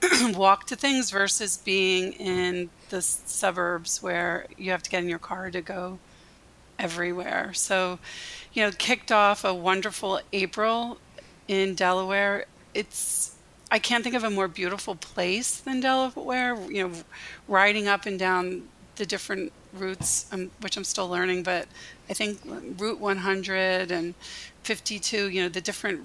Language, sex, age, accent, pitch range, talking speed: English, female, 40-59, American, 180-205 Hz, 150 wpm